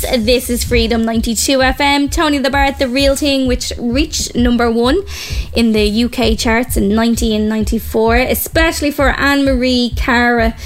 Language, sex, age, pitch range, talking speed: English, female, 20-39, 225-270 Hz, 140 wpm